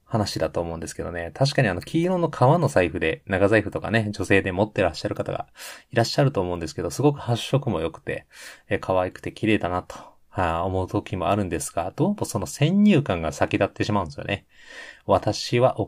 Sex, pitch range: male, 95-130 Hz